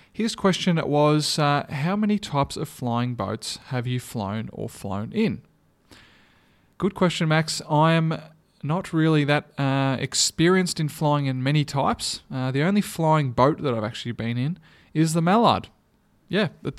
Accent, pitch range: Australian, 125-160 Hz